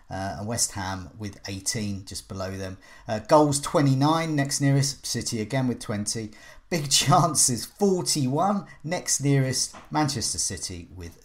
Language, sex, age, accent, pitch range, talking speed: English, male, 40-59, British, 115-145 Hz, 135 wpm